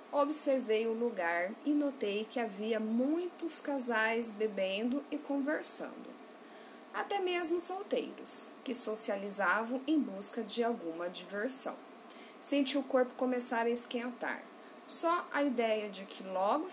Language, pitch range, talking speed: Portuguese, 195-275 Hz, 120 wpm